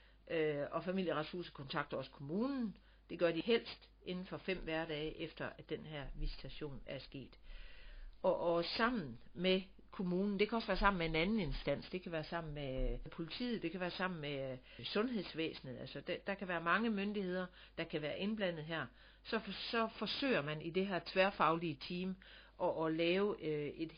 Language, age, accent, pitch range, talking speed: Danish, 60-79, native, 150-195 Hz, 180 wpm